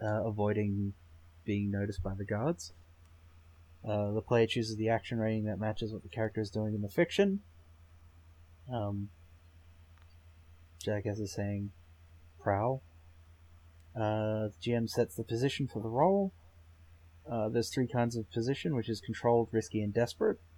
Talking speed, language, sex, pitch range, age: 150 wpm, English, male, 85-115 Hz, 30-49